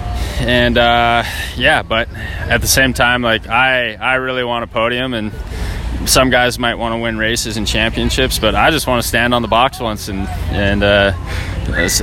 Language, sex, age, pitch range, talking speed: English, male, 20-39, 95-115 Hz, 190 wpm